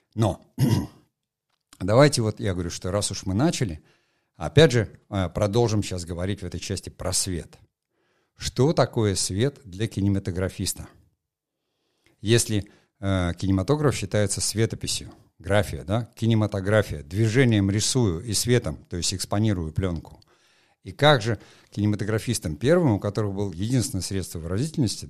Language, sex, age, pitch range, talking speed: Russian, male, 60-79, 95-115 Hz, 125 wpm